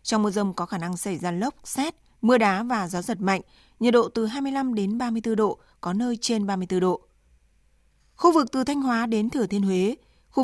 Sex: female